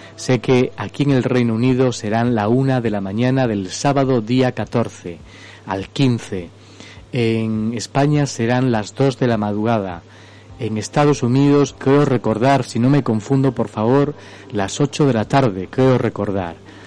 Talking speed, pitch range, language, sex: 160 wpm, 105-130 Hz, Spanish, male